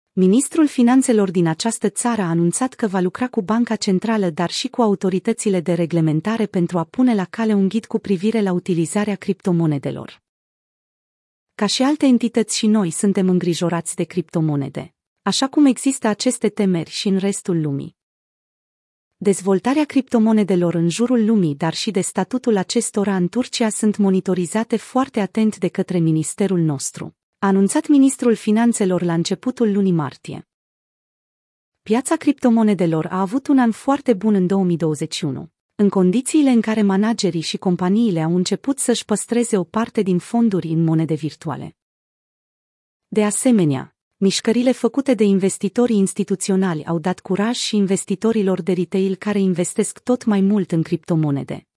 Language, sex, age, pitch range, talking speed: Romanian, female, 30-49, 180-235 Hz, 145 wpm